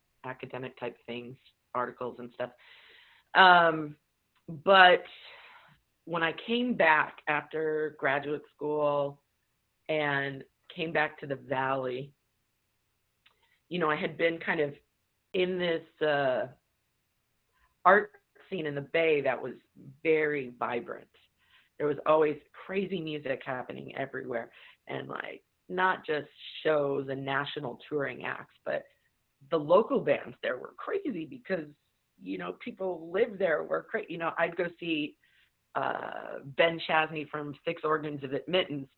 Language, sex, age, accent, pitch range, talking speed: English, female, 30-49, American, 140-175 Hz, 130 wpm